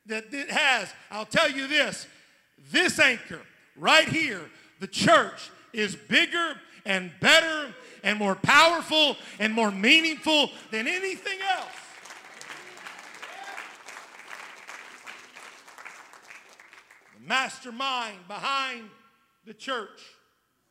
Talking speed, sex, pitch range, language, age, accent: 90 wpm, male, 220-270 Hz, English, 50-69, American